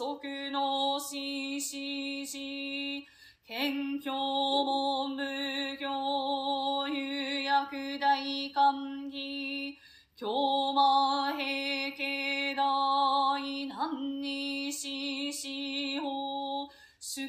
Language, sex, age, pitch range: Japanese, female, 30-49, 275-280 Hz